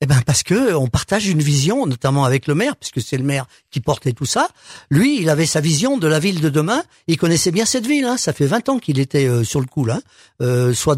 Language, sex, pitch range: French, male, 135-180 Hz